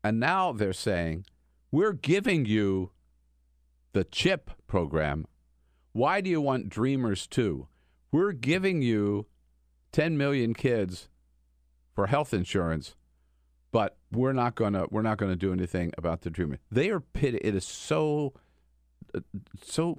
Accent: American